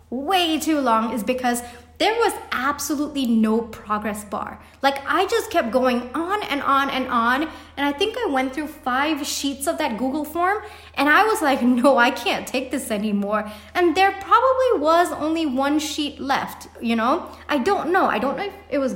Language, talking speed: English, 195 wpm